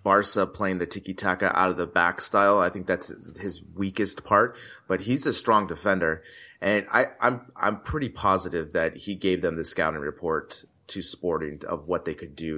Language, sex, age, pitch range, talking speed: English, male, 30-49, 90-110 Hz, 195 wpm